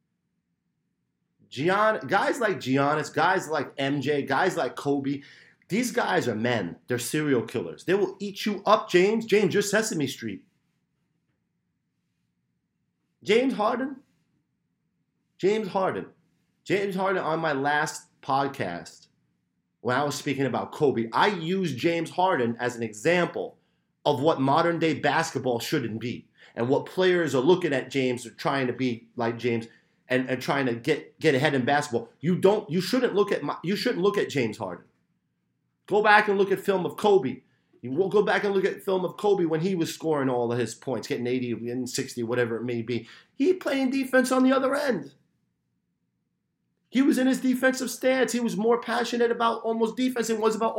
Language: English